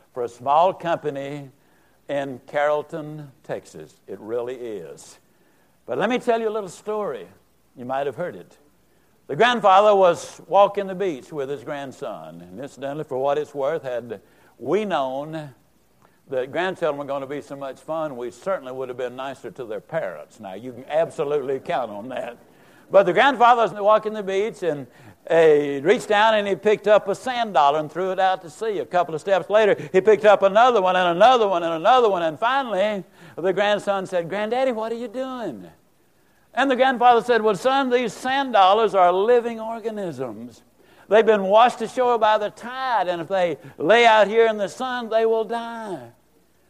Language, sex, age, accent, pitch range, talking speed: English, male, 60-79, American, 165-240 Hz, 190 wpm